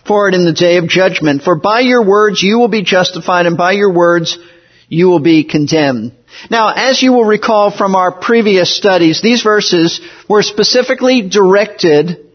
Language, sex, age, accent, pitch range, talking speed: English, male, 50-69, American, 180-230 Hz, 170 wpm